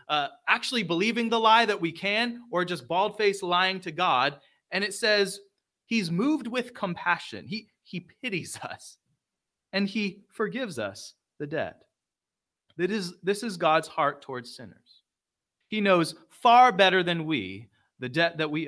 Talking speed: 155 wpm